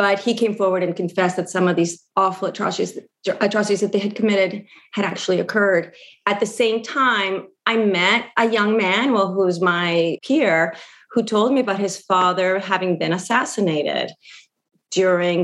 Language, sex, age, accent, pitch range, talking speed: English, female, 30-49, American, 185-225 Hz, 165 wpm